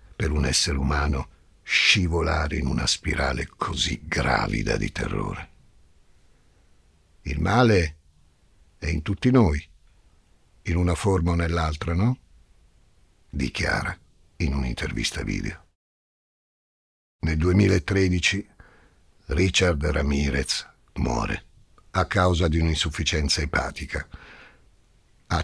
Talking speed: 90 wpm